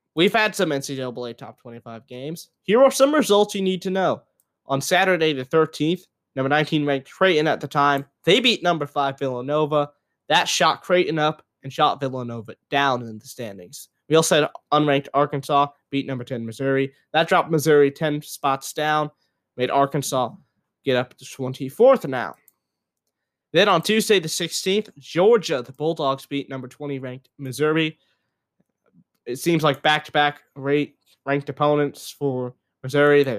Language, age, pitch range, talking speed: English, 20-39, 130-165 Hz, 155 wpm